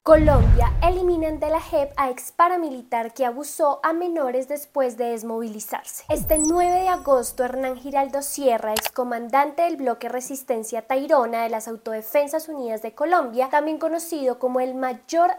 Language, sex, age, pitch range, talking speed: Spanish, female, 10-29, 245-315 Hz, 150 wpm